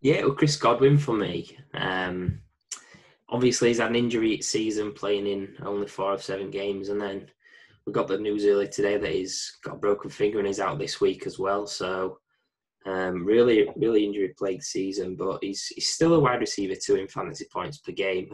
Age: 10-29